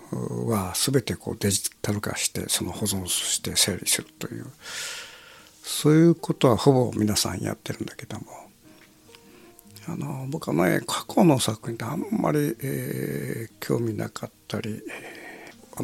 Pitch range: 105-145 Hz